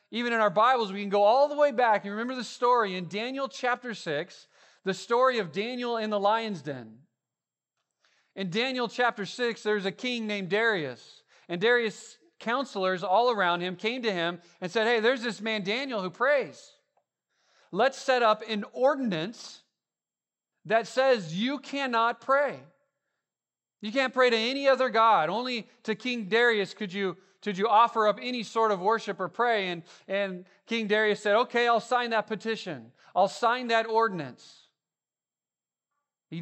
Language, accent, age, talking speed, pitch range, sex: English, American, 30-49, 170 wpm, 185-235 Hz, male